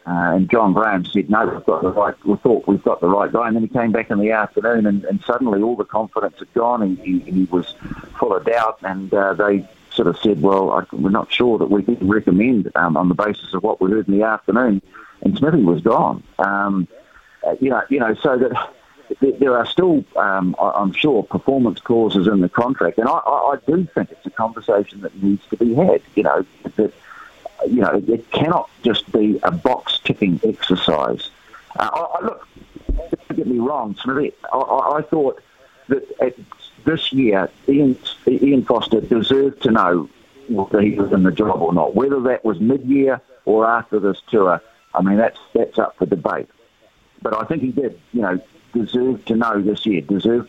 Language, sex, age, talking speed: English, male, 50-69, 200 wpm